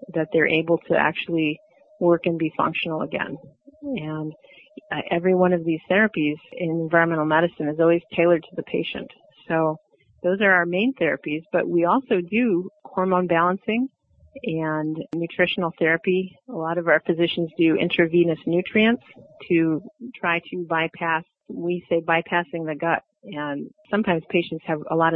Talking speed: 150 wpm